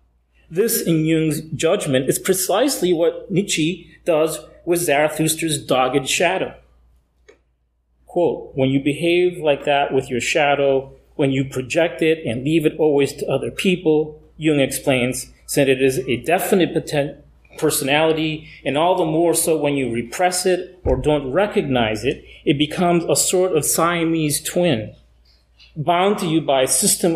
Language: English